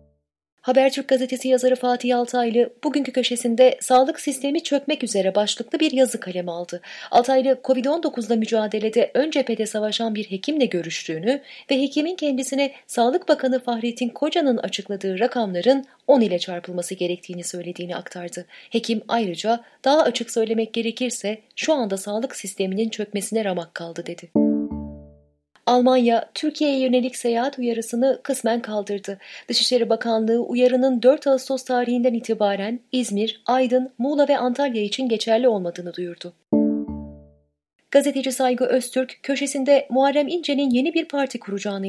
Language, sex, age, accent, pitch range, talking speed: Turkish, female, 30-49, native, 205-270 Hz, 125 wpm